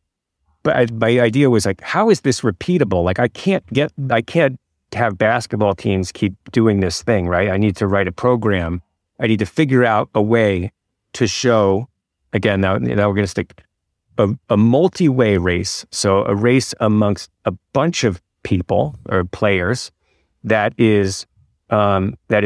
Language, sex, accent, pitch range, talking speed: English, male, American, 95-120 Hz, 170 wpm